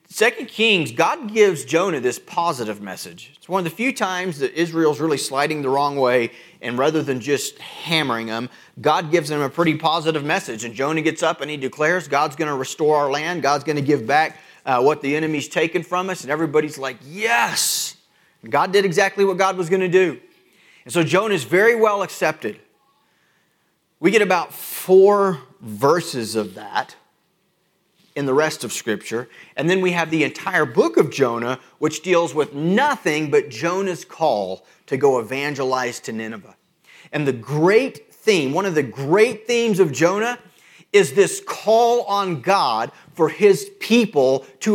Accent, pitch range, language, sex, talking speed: American, 150-210 Hz, English, male, 175 wpm